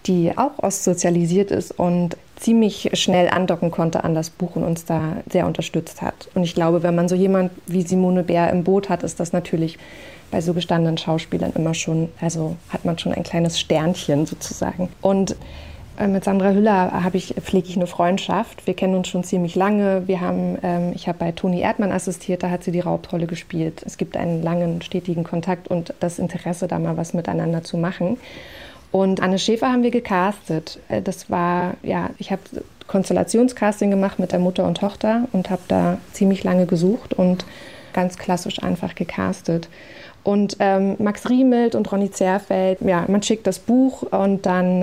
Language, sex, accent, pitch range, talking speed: German, female, German, 175-195 Hz, 175 wpm